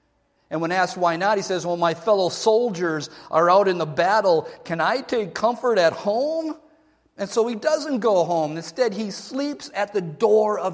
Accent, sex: American, male